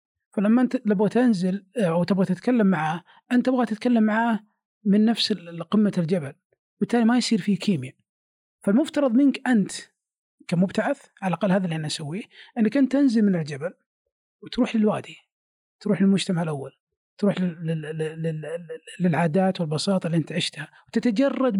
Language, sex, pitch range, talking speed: Arabic, male, 170-225 Hz, 130 wpm